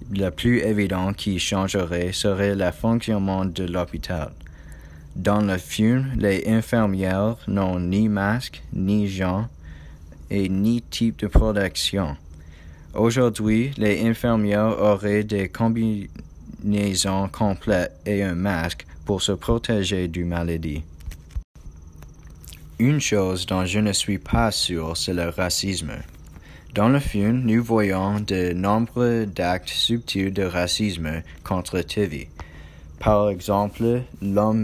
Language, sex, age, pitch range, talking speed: French, male, 20-39, 85-105 Hz, 115 wpm